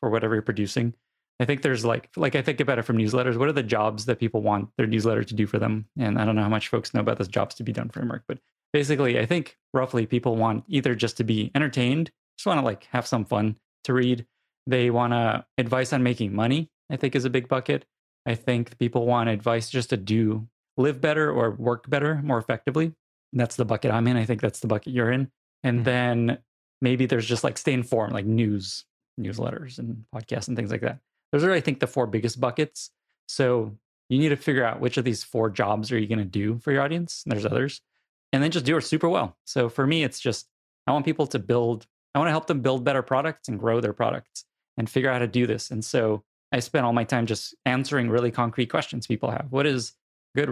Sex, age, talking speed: male, 20-39, 240 wpm